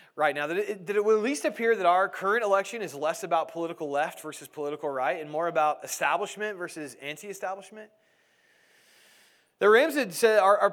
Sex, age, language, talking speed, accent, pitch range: male, 30-49, English, 180 wpm, American, 175-235 Hz